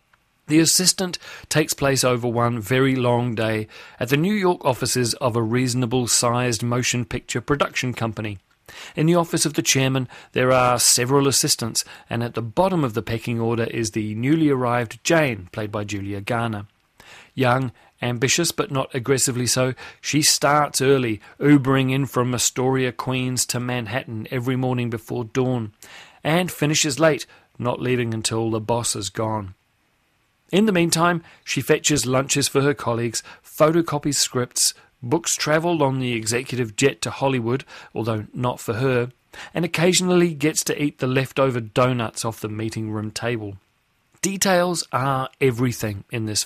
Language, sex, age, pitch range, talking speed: English, male, 40-59, 120-145 Hz, 155 wpm